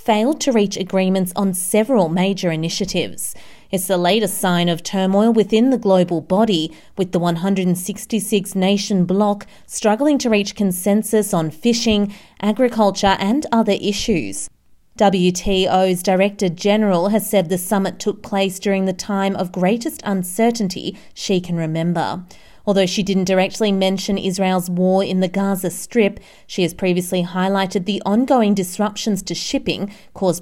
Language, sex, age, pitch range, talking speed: English, female, 30-49, 180-210 Hz, 140 wpm